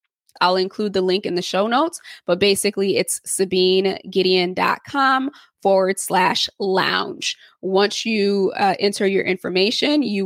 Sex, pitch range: female, 185-205 Hz